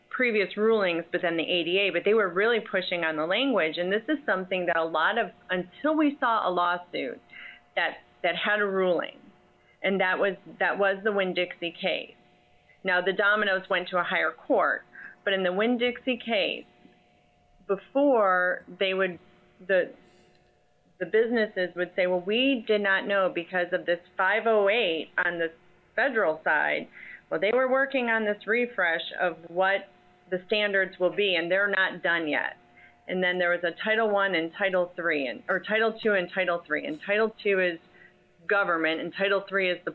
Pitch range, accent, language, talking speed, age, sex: 175-210 Hz, American, English, 185 wpm, 30-49, female